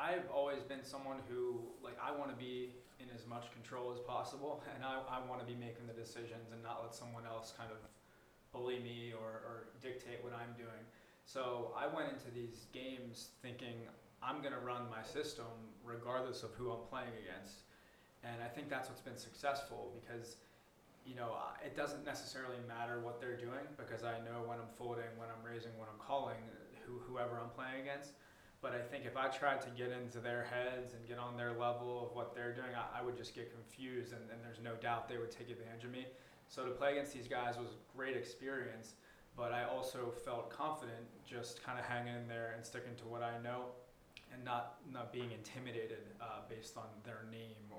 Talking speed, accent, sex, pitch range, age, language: 210 wpm, American, male, 115-125 Hz, 20-39, English